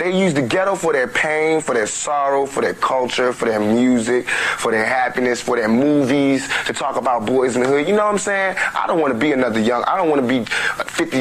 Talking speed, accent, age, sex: 250 wpm, American, 20-39, male